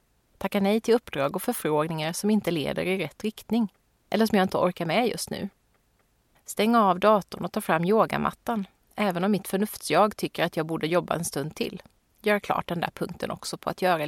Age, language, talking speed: 30-49, Swedish, 205 wpm